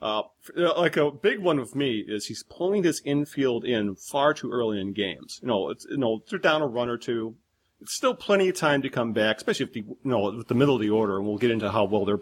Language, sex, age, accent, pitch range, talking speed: English, male, 40-59, American, 115-155 Hz, 270 wpm